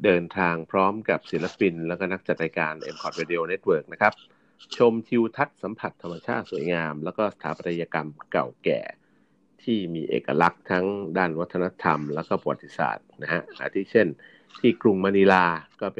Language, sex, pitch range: Thai, male, 80-105 Hz